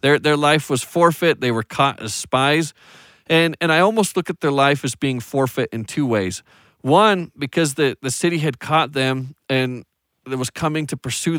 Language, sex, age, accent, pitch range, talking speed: English, male, 40-59, American, 120-155 Hz, 200 wpm